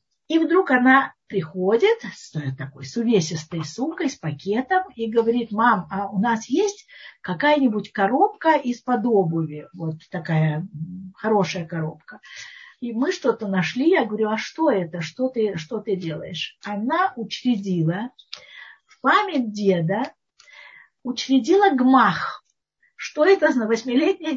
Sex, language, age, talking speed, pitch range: female, Russian, 50-69, 125 wpm, 190-290 Hz